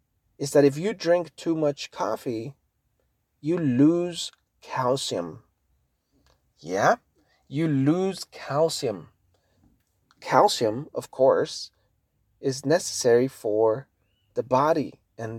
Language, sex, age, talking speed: English, male, 40-59, 95 wpm